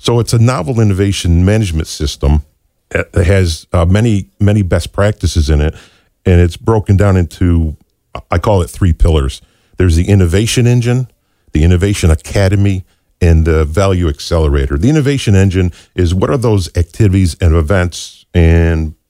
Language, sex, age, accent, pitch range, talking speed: English, male, 50-69, American, 85-110 Hz, 150 wpm